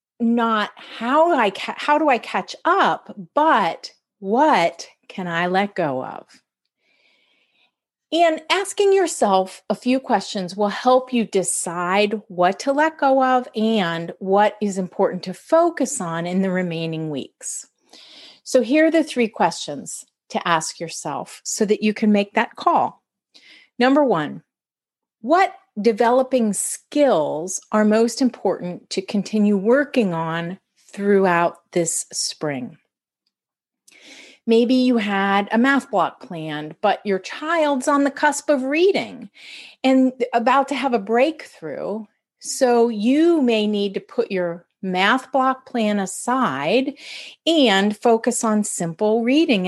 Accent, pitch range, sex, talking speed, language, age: American, 190-265 Hz, female, 135 wpm, English, 40-59